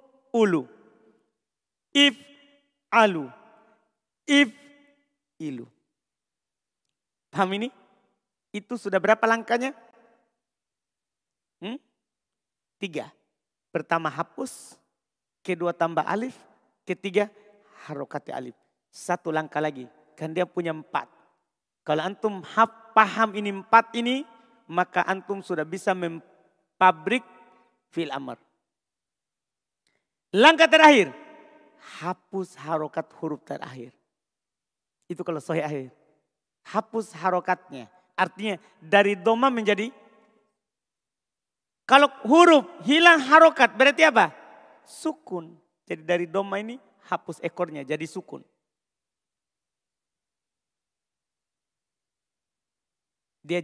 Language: Indonesian